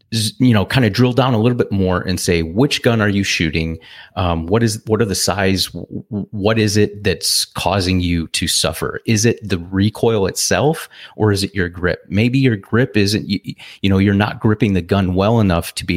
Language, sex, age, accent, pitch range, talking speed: English, male, 30-49, American, 90-110 Hz, 220 wpm